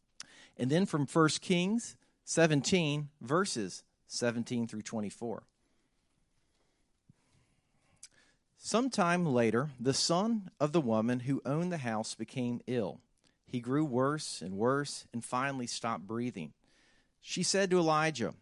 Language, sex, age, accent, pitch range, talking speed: English, male, 40-59, American, 120-165 Hz, 115 wpm